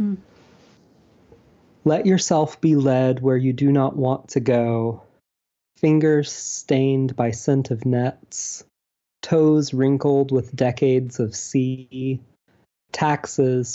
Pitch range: 120-145 Hz